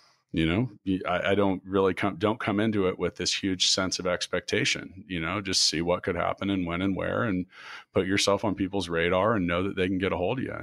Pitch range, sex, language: 90-100 Hz, male, English